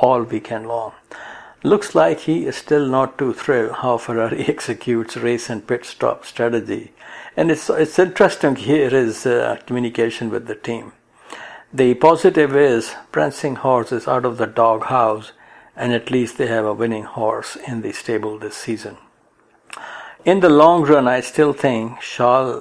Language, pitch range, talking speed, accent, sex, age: English, 115-135 Hz, 160 wpm, Indian, male, 60-79